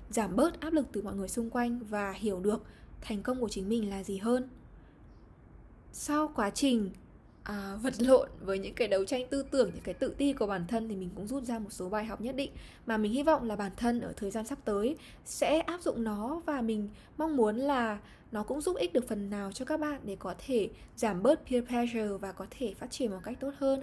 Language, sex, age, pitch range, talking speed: Vietnamese, female, 10-29, 205-270 Hz, 245 wpm